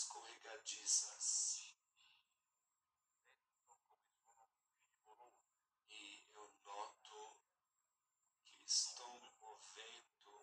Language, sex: Portuguese, male